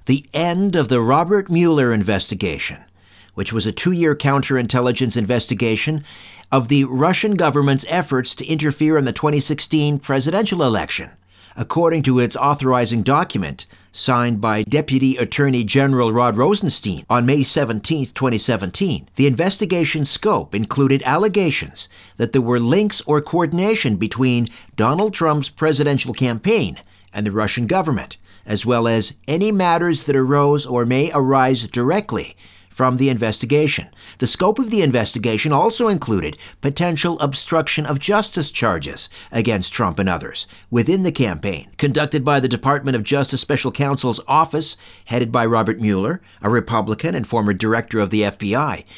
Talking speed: 140 wpm